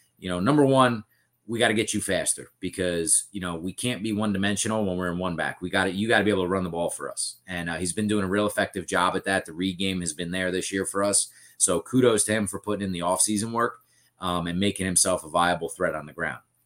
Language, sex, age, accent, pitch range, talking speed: English, male, 30-49, American, 90-105 Hz, 280 wpm